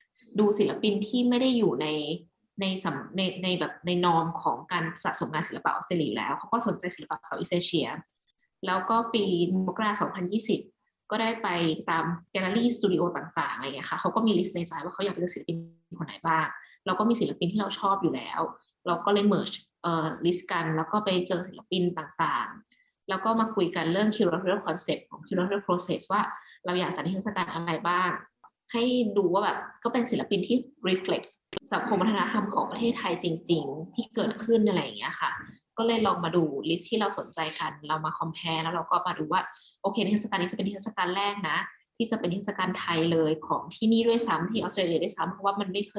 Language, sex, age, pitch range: Thai, female, 20-39, 170-210 Hz